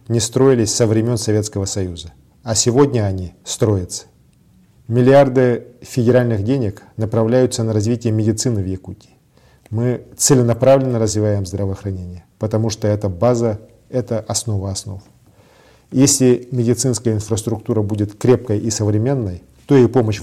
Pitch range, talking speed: 105-125 Hz, 120 wpm